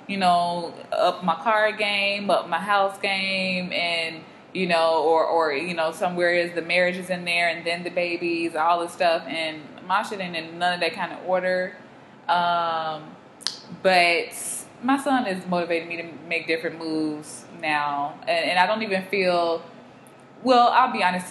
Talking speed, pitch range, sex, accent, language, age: 180 wpm, 165-210 Hz, female, American, English, 20-39